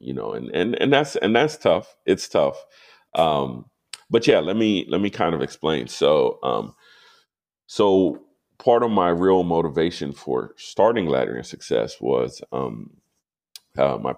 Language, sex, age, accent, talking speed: English, male, 40-59, American, 155 wpm